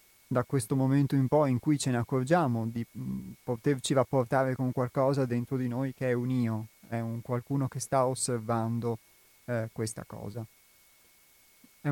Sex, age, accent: male, 30-49, native